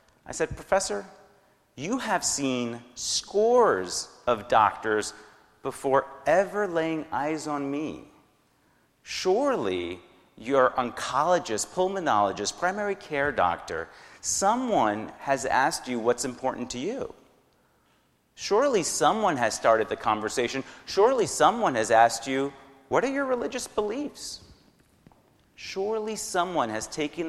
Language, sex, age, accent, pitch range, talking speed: English, male, 40-59, American, 110-160 Hz, 110 wpm